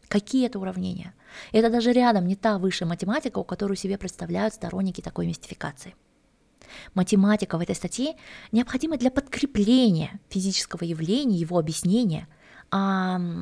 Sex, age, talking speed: female, 20-39, 125 wpm